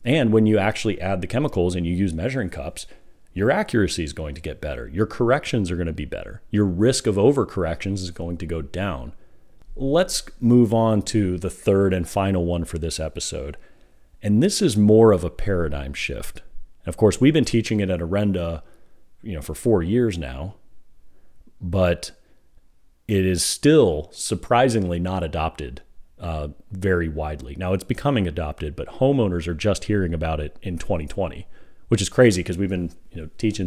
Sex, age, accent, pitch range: male, 40-59, American, 85-110 Hz